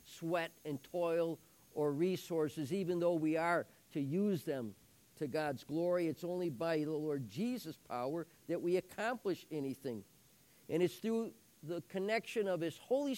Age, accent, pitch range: 50-69, American, 145-190 Hz